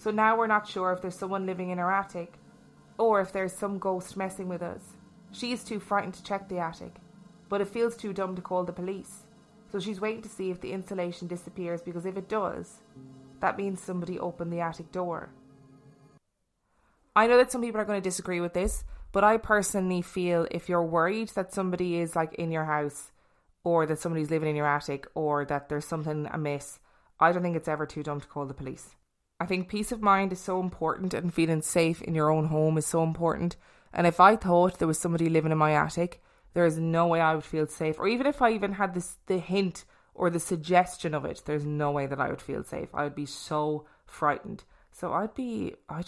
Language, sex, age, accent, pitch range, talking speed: English, female, 20-39, Irish, 155-195 Hz, 225 wpm